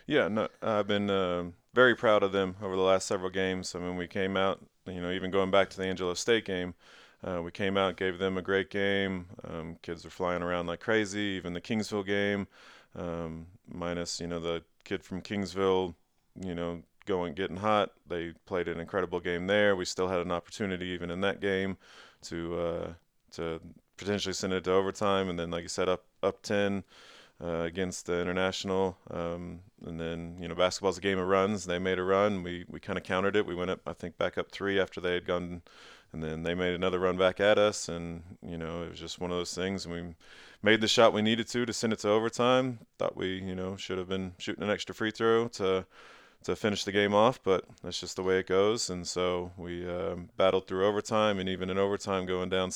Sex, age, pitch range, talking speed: male, 20-39, 85-100 Hz, 230 wpm